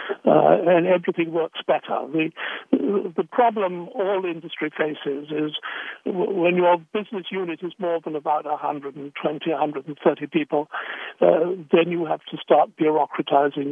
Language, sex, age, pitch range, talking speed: English, male, 60-79, 150-175 Hz, 130 wpm